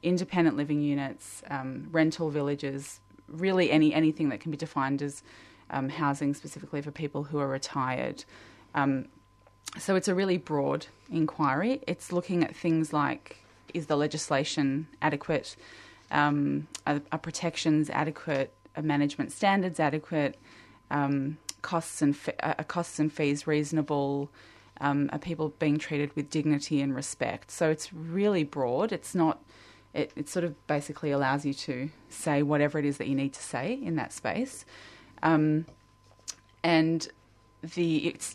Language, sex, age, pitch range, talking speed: English, female, 20-39, 140-160 Hz, 145 wpm